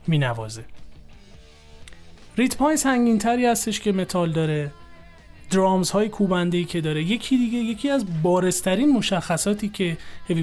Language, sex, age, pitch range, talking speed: Persian, male, 30-49, 150-210 Hz, 125 wpm